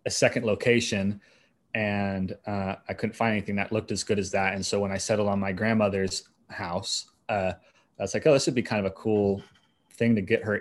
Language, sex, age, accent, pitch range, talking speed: English, male, 30-49, American, 100-120 Hz, 225 wpm